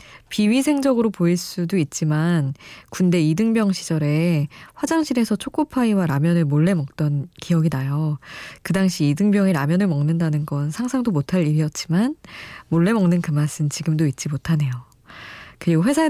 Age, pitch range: 20-39, 155-220 Hz